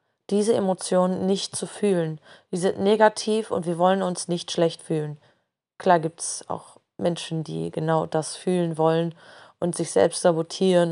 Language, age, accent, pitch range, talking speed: German, 20-39, German, 165-195 Hz, 160 wpm